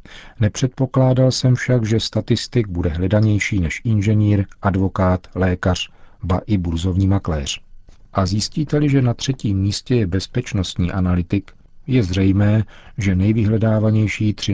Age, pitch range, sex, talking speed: 40-59, 90-110 Hz, male, 115 wpm